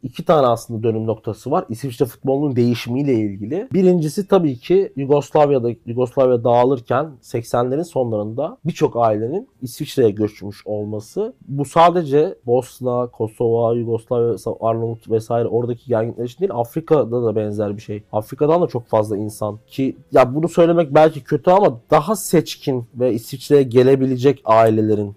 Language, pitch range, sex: Turkish, 110-140 Hz, male